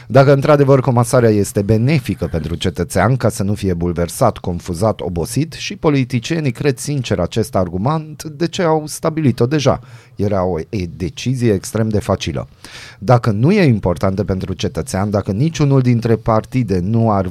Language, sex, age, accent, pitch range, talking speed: Romanian, male, 30-49, native, 100-135 Hz, 150 wpm